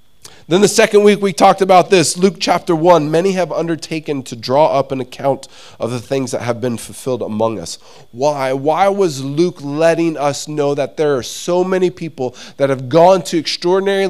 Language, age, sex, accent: English, 20-39, male, American